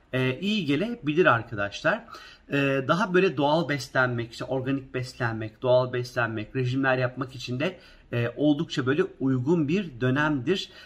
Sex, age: male, 50-69